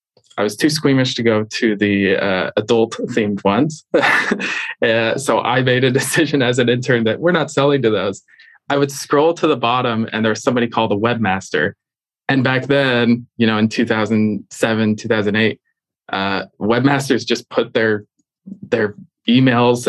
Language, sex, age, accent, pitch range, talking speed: English, male, 20-39, American, 110-130 Hz, 165 wpm